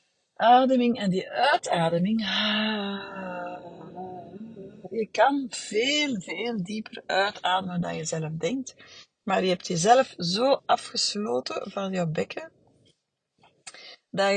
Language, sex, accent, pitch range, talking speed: Dutch, female, Dutch, 180-225 Hz, 100 wpm